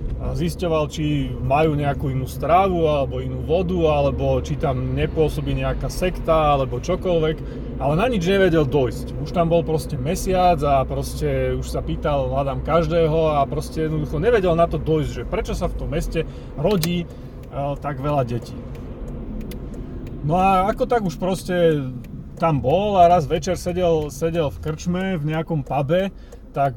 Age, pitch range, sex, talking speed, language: 30-49, 140-170 Hz, male, 160 wpm, Slovak